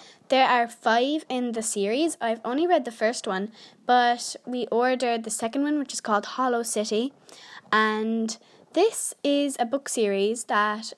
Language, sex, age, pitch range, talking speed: English, female, 10-29, 220-280 Hz, 165 wpm